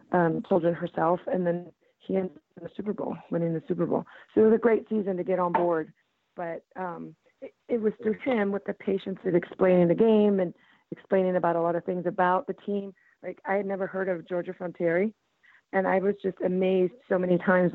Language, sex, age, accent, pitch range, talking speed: English, female, 30-49, American, 175-205 Hz, 225 wpm